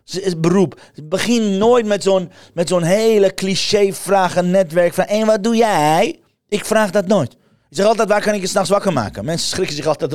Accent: Dutch